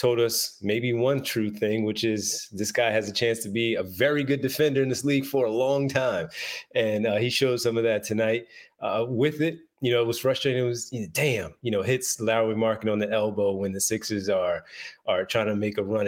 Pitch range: 105-125 Hz